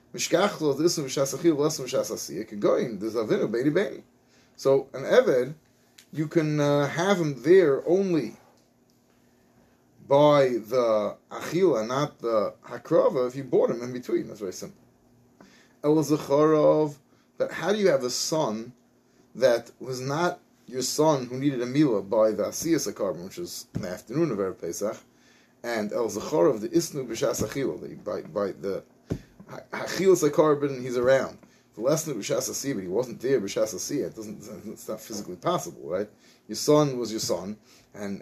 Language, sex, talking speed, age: English, male, 135 wpm, 30-49